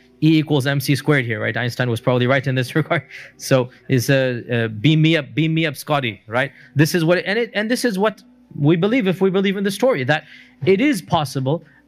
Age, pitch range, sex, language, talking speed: 30-49, 130-170 Hz, male, English, 235 wpm